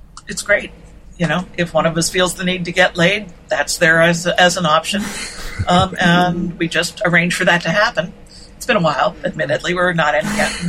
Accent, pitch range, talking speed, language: American, 160-185 Hz, 215 wpm, English